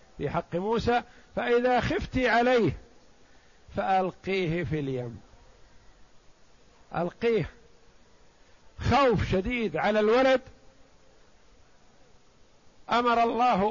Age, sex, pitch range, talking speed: 50-69, male, 170-220 Hz, 70 wpm